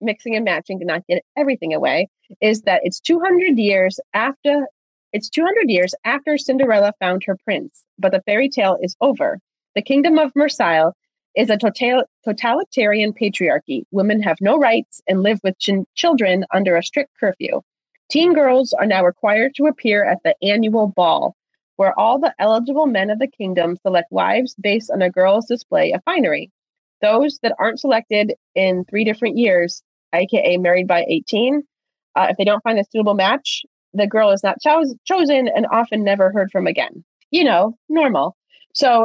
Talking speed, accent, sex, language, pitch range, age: 175 wpm, American, female, English, 190-275 Hz, 30-49